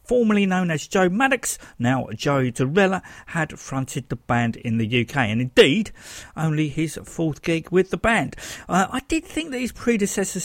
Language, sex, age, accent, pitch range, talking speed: English, male, 50-69, British, 125-190 Hz, 180 wpm